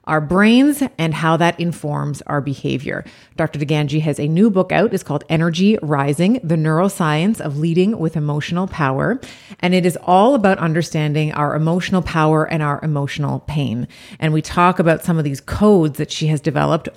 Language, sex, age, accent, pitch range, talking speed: English, female, 30-49, American, 150-180 Hz, 180 wpm